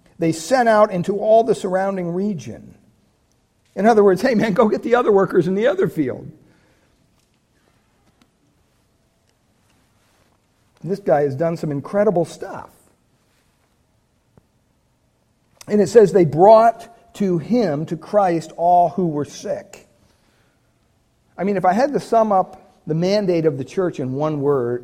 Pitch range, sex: 165-225 Hz, male